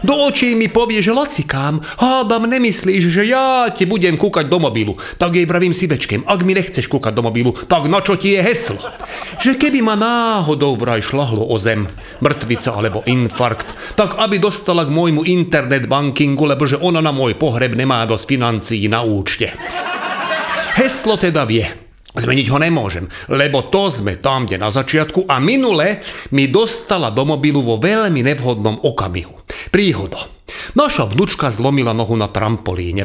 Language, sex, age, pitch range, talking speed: Slovak, male, 40-59, 125-180 Hz, 165 wpm